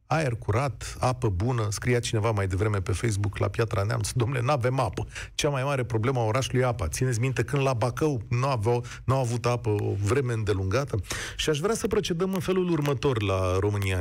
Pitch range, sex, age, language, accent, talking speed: 105-165 Hz, male, 40-59, Romanian, native, 200 wpm